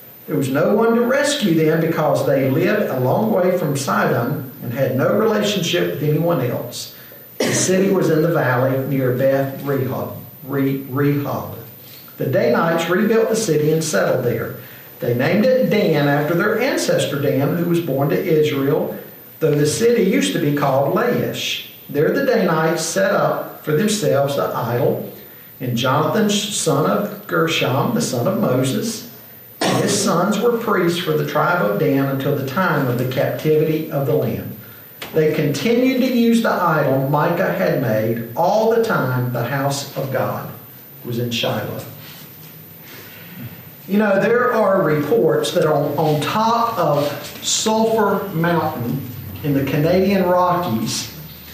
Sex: male